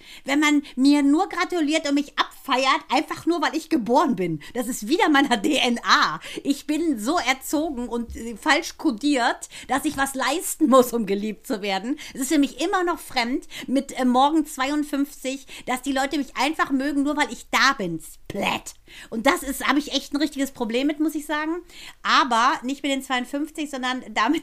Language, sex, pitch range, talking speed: German, female, 230-300 Hz, 185 wpm